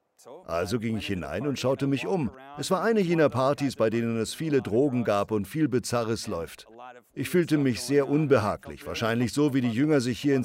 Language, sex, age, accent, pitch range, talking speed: German, male, 50-69, German, 115-160 Hz, 205 wpm